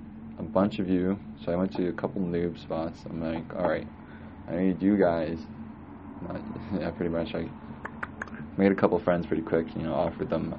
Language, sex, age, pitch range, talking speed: English, male, 20-39, 80-95 Hz, 185 wpm